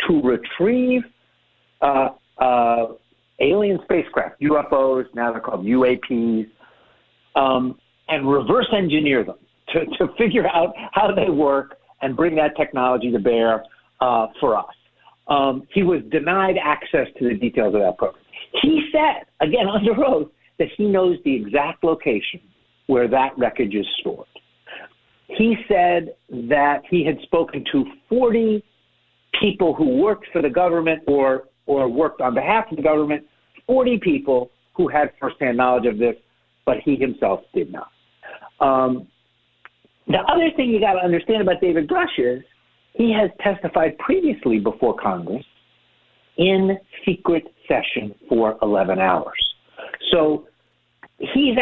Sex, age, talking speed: male, 50-69, 140 wpm